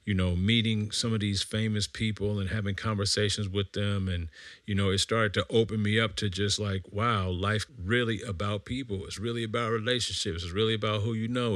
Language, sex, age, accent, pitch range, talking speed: English, male, 40-59, American, 95-115 Hz, 210 wpm